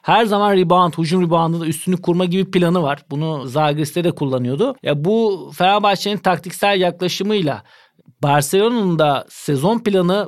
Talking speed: 140 wpm